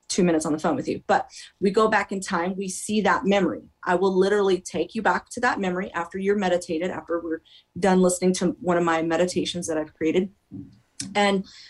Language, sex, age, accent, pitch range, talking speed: English, female, 30-49, American, 170-205 Hz, 210 wpm